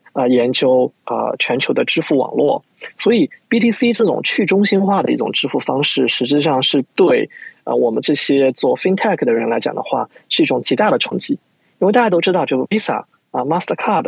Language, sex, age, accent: Chinese, male, 20-39, native